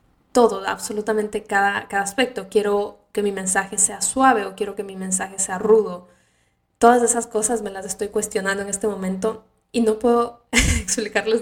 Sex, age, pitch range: female, 10-29, 200-230 Hz